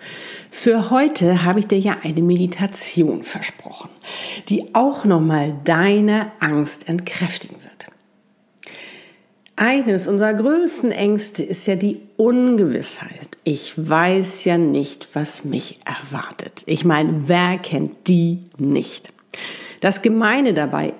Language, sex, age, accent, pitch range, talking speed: German, female, 50-69, German, 155-210 Hz, 115 wpm